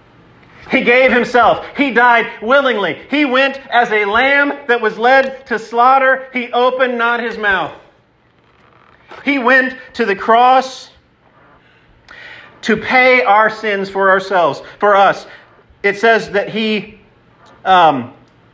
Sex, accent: male, American